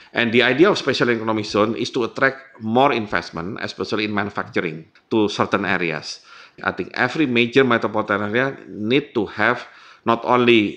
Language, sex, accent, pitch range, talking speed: English, male, Indonesian, 100-125 Hz, 160 wpm